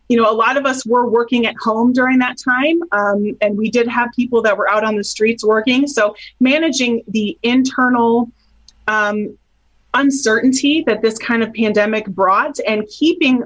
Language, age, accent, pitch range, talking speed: English, 30-49, American, 205-245 Hz, 180 wpm